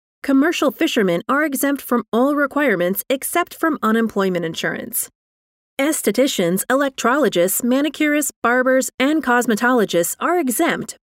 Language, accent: English, American